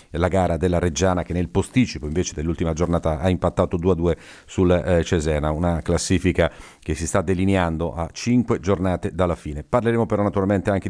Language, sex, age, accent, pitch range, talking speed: Italian, male, 40-59, native, 80-100 Hz, 175 wpm